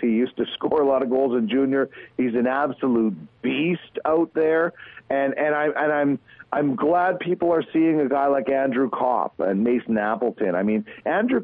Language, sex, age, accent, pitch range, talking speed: English, male, 40-59, American, 110-150 Hz, 195 wpm